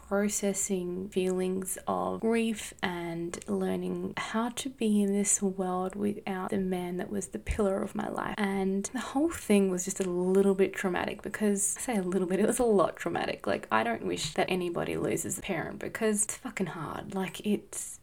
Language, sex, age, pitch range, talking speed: English, female, 20-39, 185-215 Hz, 195 wpm